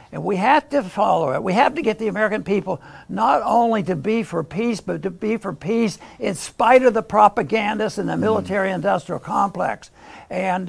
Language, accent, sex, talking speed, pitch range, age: English, American, male, 195 wpm, 185-225 Hz, 60-79